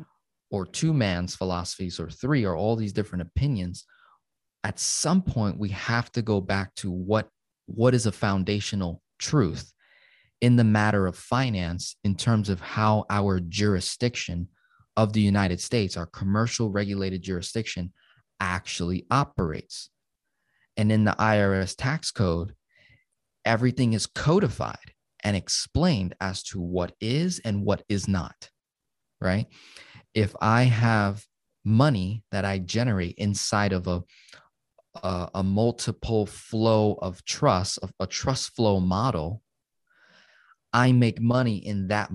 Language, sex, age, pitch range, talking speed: English, male, 20-39, 95-115 Hz, 130 wpm